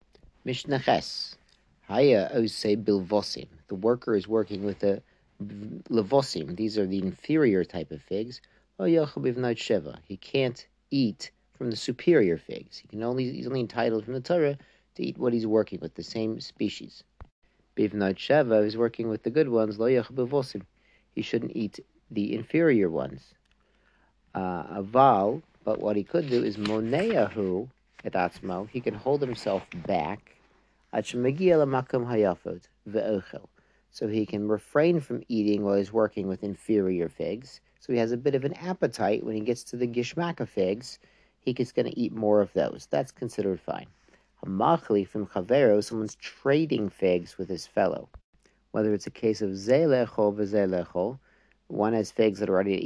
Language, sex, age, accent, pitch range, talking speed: English, male, 50-69, American, 100-125 Hz, 150 wpm